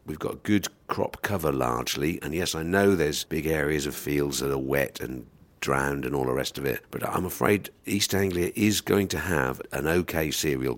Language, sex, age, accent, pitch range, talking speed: English, male, 50-69, British, 75-95 Hz, 210 wpm